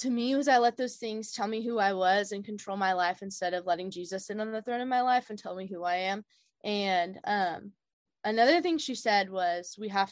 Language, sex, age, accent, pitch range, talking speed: English, female, 20-39, American, 175-210 Hz, 250 wpm